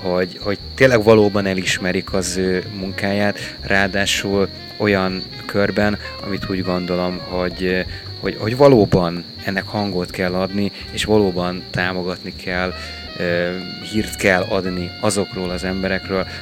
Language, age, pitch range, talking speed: Hungarian, 30-49, 90-105 Hz, 115 wpm